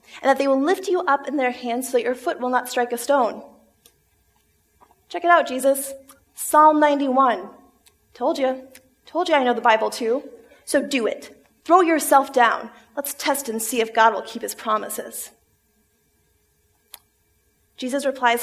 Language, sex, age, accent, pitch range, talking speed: English, female, 20-39, American, 235-295 Hz, 170 wpm